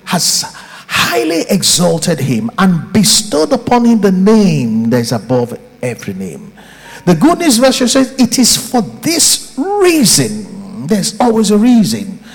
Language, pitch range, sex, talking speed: English, 180-250 Hz, male, 135 wpm